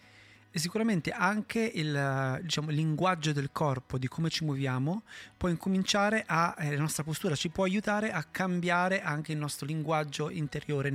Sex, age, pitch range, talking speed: male, 30-49, 140-170 Hz, 160 wpm